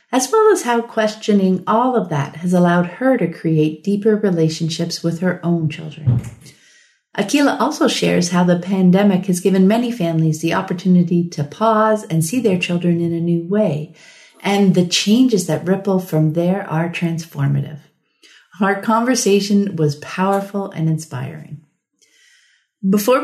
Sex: female